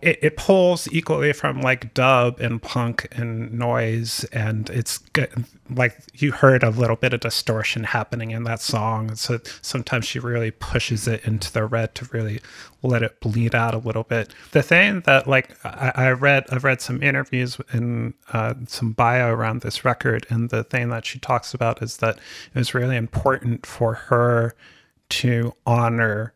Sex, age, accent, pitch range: male, 30-49, American, 110-130 Hz